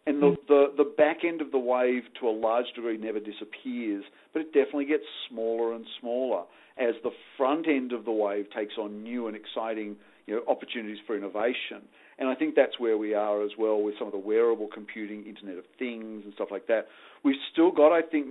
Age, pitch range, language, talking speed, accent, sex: 50-69, 110-150 Hz, English, 215 wpm, Australian, male